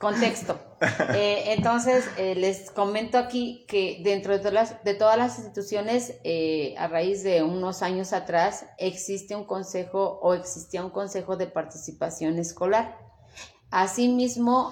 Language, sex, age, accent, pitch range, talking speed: Spanish, female, 30-49, Mexican, 170-210 Hz, 130 wpm